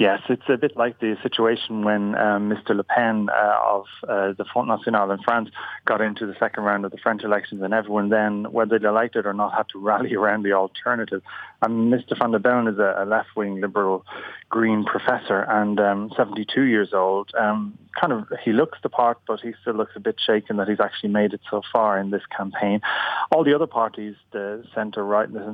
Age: 30-49